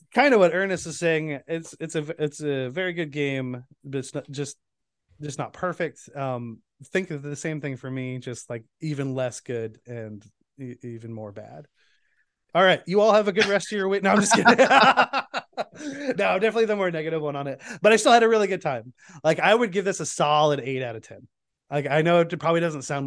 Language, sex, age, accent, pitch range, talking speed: English, male, 20-39, American, 135-170 Hz, 230 wpm